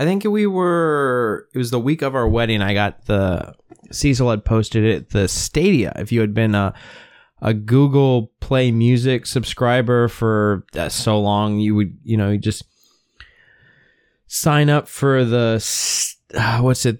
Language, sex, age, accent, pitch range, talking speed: English, male, 20-39, American, 105-130 Hz, 160 wpm